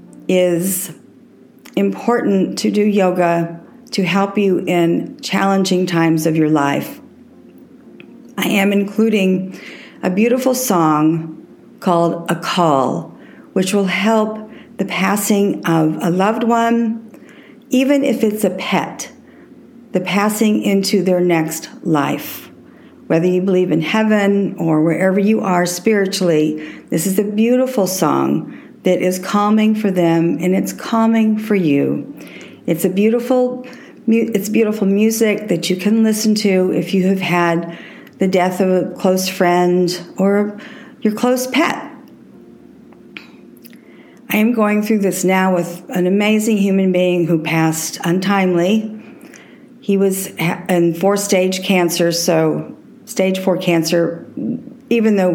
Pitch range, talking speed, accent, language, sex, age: 180-220 Hz, 130 wpm, American, English, female, 50-69